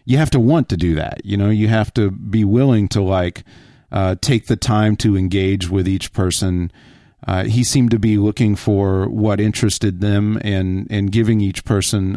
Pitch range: 100-130 Hz